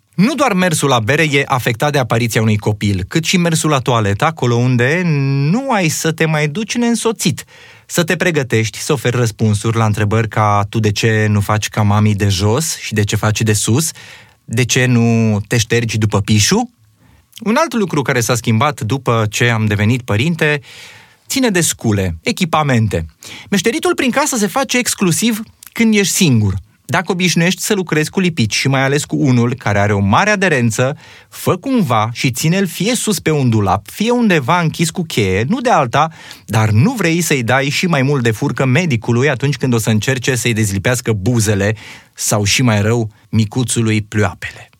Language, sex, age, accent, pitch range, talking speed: Romanian, male, 20-39, native, 110-165 Hz, 185 wpm